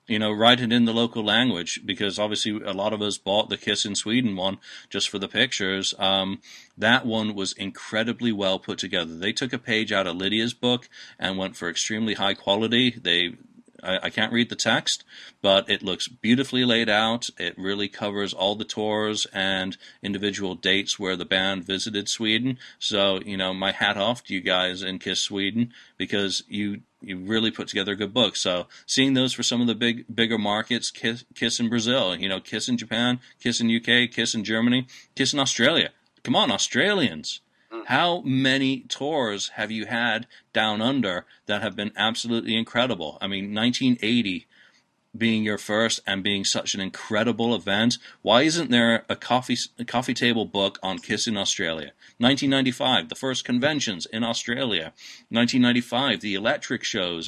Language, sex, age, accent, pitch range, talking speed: English, male, 40-59, American, 100-120 Hz, 180 wpm